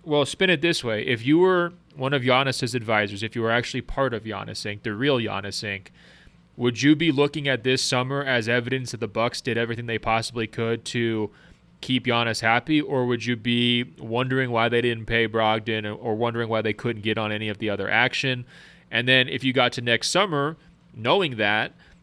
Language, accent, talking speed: English, American, 210 wpm